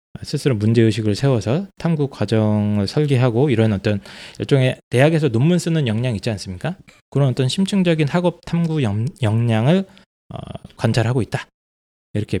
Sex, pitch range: male, 105-150 Hz